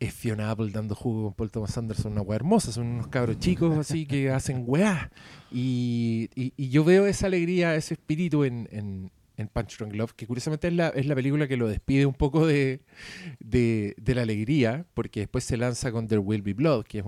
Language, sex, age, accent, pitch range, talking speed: Spanish, male, 40-59, Argentinian, 110-140 Hz, 220 wpm